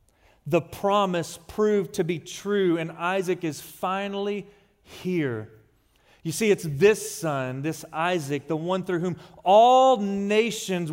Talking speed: 130 wpm